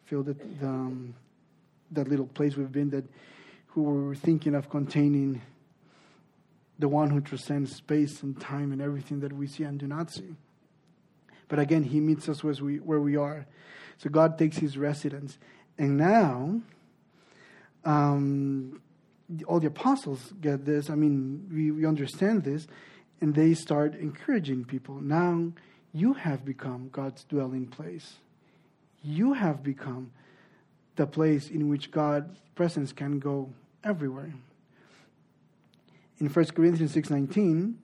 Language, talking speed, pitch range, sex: English, 140 wpm, 145-175 Hz, male